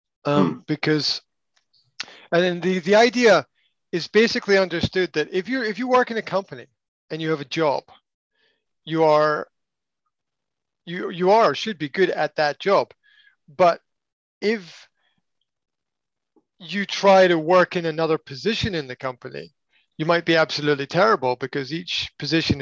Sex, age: male, 40-59